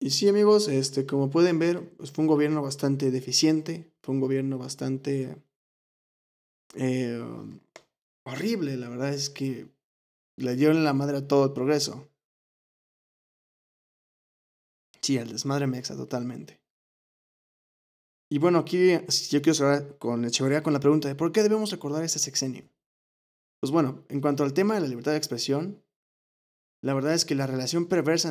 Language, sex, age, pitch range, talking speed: Spanish, male, 20-39, 130-150 Hz, 150 wpm